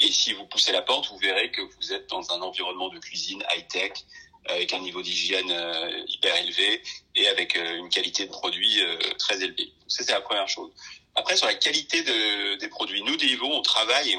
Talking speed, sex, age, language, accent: 200 wpm, male, 30-49, French, French